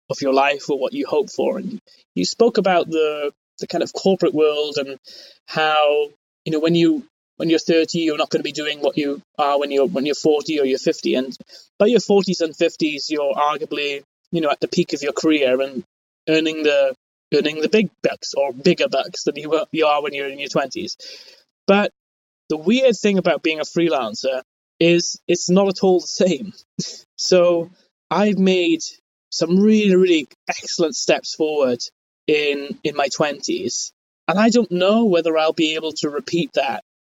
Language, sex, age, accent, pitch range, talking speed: English, male, 20-39, British, 150-185 Hz, 190 wpm